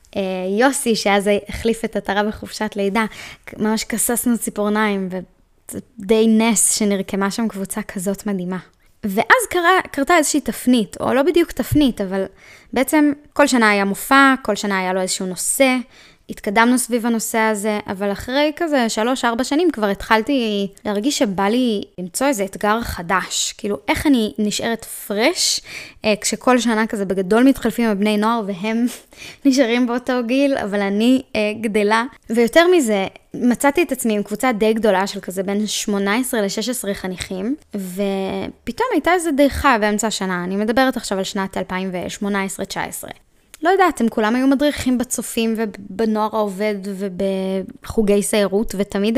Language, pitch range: Hebrew, 200-255 Hz